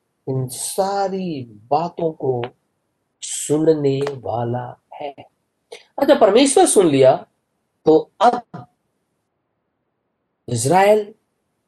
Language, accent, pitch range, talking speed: Hindi, native, 150-245 Hz, 70 wpm